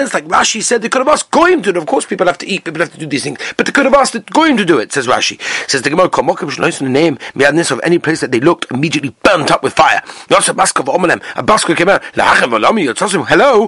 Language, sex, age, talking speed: English, male, 40-59, 285 wpm